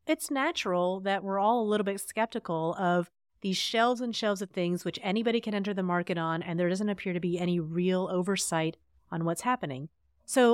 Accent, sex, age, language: American, female, 30-49, English